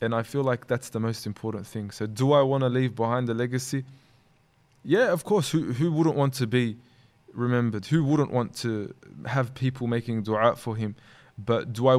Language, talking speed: Arabic, 205 wpm